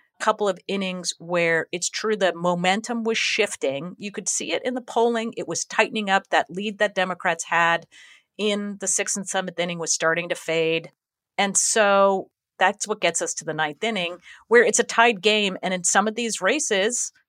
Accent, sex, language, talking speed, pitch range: American, female, English, 200 wpm, 160-210 Hz